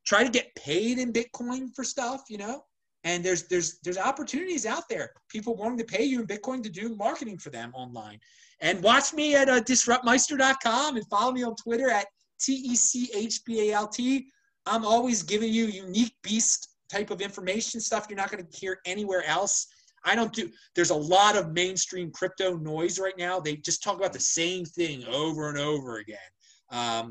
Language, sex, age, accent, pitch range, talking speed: English, male, 30-49, American, 165-235 Hz, 185 wpm